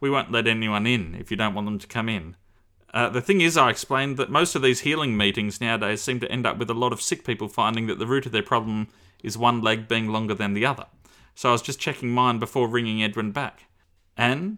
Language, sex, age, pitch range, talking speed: English, male, 30-49, 105-130 Hz, 255 wpm